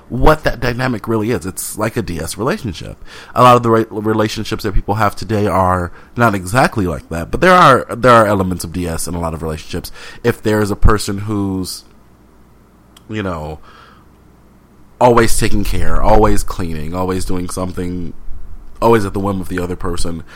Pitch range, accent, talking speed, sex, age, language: 90-110 Hz, American, 175 wpm, male, 30-49, English